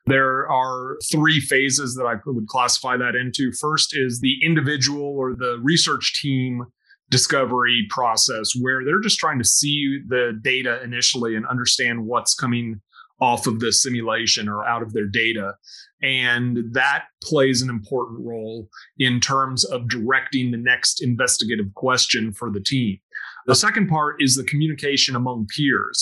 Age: 30-49